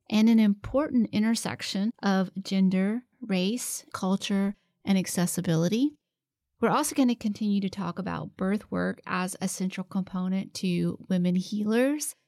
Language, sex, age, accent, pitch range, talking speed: English, female, 30-49, American, 185-220 Hz, 130 wpm